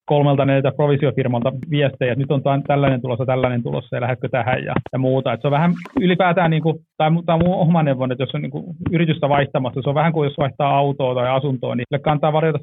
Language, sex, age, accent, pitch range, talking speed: Finnish, male, 30-49, native, 135-160 Hz, 240 wpm